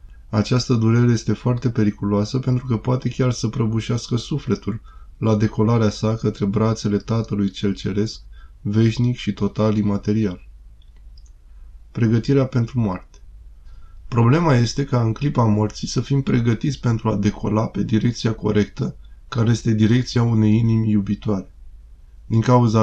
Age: 20-39